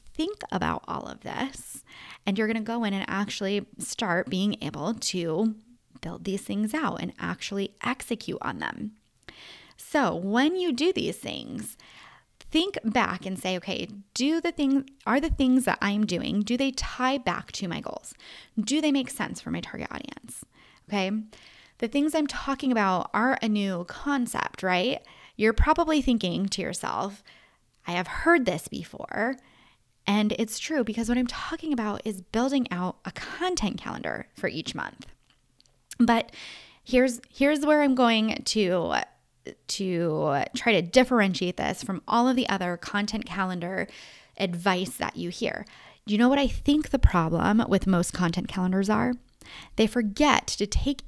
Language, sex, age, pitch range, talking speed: English, female, 20-39, 195-265 Hz, 165 wpm